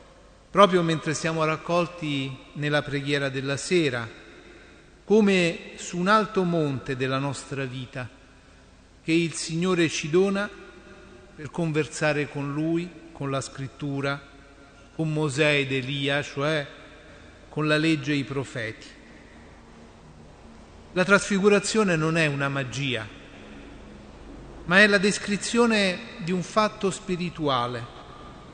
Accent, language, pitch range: native, Italian, 135-185 Hz